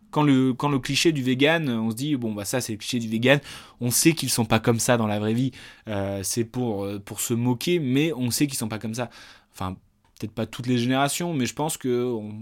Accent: French